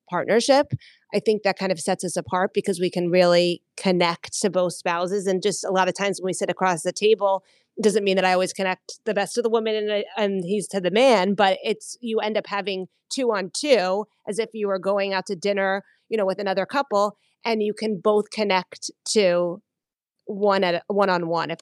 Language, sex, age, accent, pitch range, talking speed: English, female, 30-49, American, 180-215 Hz, 225 wpm